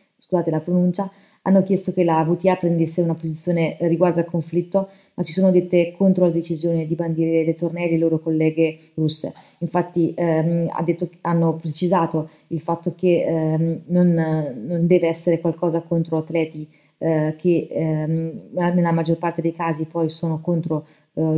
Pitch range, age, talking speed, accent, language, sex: 165-180 Hz, 20-39, 165 wpm, native, Italian, female